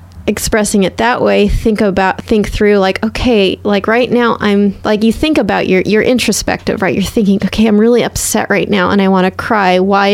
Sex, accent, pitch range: female, American, 185-225 Hz